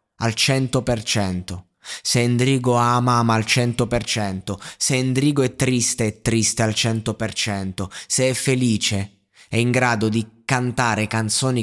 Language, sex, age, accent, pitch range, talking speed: Italian, male, 20-39, native, 105-130 Hz, 130 wpm